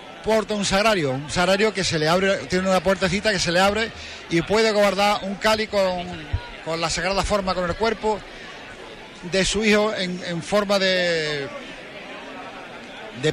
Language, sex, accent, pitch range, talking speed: Spanish, male, Spanish, 170-200 Hz, 165 wpm